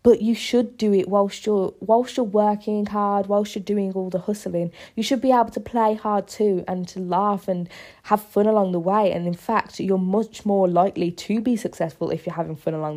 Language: English